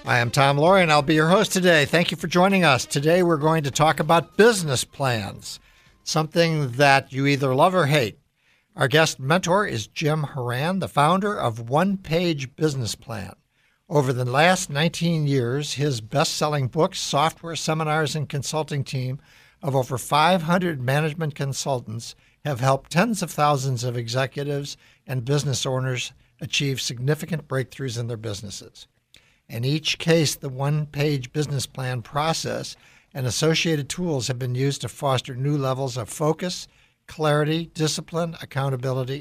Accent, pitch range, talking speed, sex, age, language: American, 130-160 Hz, 155 wpm, male, 60-79, English